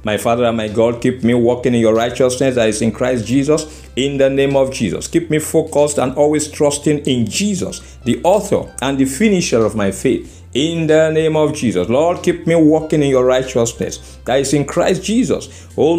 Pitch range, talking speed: 115-165 Hz, 205 wpm